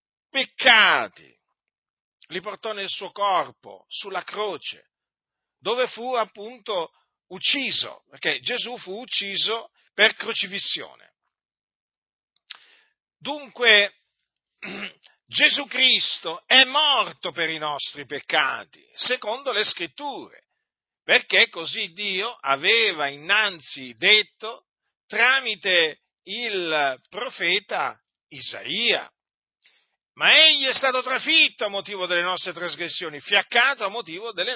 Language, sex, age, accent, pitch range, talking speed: Italian, male, 50-69, native, 185-255 Hz, 95 wpm